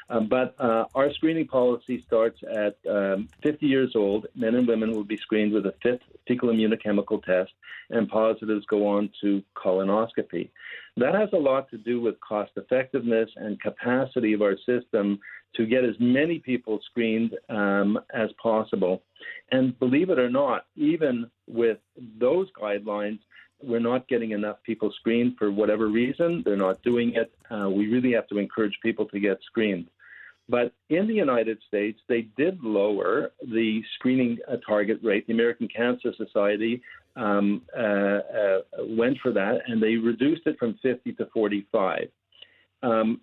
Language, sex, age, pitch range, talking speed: English, male, 50-69, 105-125 Hz, 160 wpm